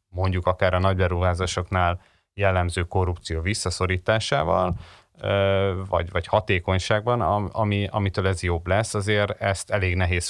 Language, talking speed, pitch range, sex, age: Hungarian, 110 wpm, 90-100 Hz, male, 30-49